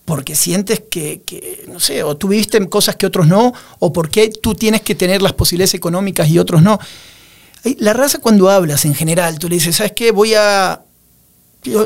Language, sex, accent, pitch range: Spanish, male, Argentinian, 155-210 Hz